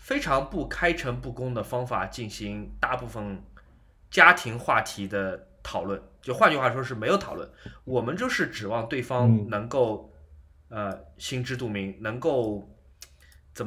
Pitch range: 100-165 Hz